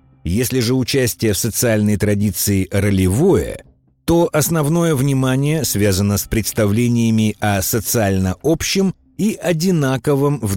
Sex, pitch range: male, 95-140 Hz